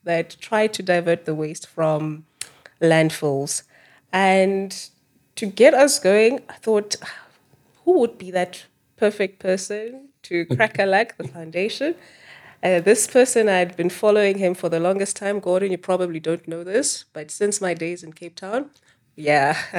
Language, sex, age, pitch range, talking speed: English, female, 20-39, 165-210 Hz, 160 wpm